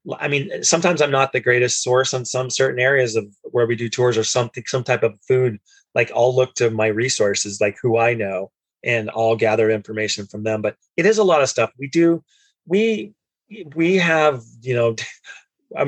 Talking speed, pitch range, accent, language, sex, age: 205 wpm, 110-130 Hz, American, English, male, 30-49